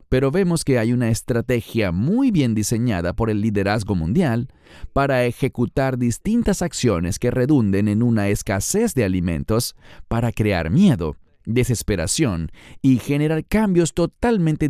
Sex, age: male, 30-49